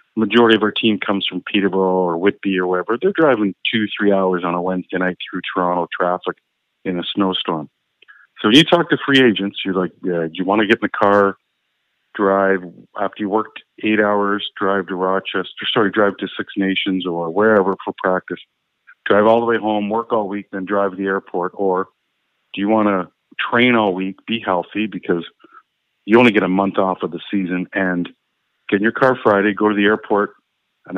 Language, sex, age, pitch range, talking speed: English, male, 40-59, 90-105 Hz, 200 wpm